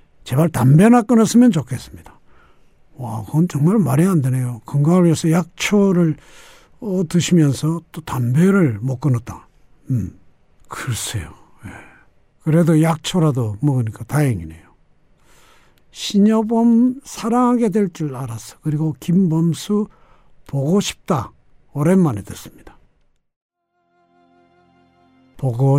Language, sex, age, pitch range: Korean, male, 60-79, 120-190 Hz